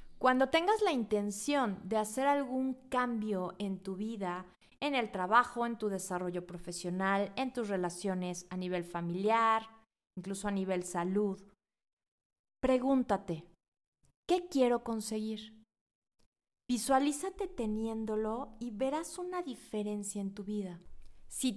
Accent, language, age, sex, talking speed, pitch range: Mexican, Spanish, 30-49, female, 115 wpm, 195-245 Hz